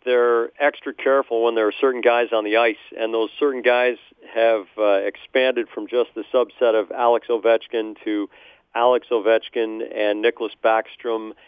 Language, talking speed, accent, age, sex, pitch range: English, 160 wpm, American, 40-59, male, 110-135 Hz